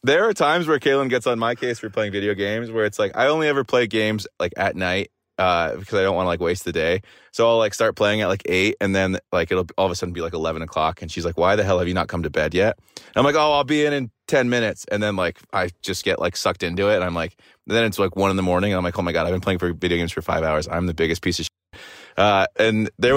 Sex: male